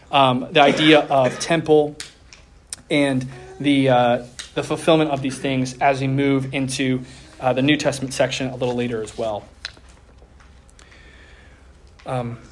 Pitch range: 135-180 Hz